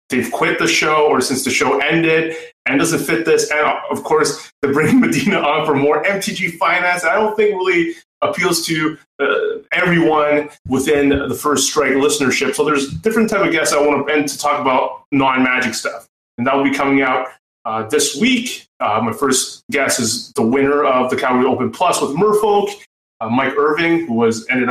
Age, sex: 30-49, male